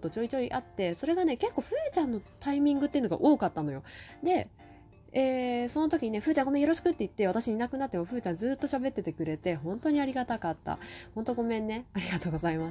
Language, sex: Japanese, female